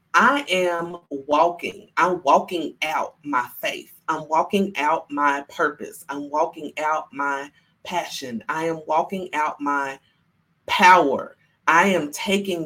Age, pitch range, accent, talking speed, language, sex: 30-49, 165-230 Hz, American, 130 wpm, English, female